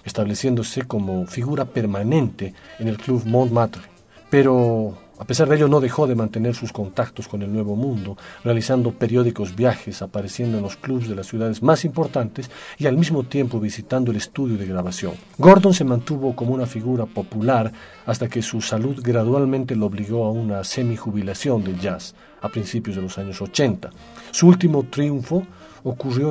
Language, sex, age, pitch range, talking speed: Spanish, male, 40-59, 110-140 Hz, 165 wpm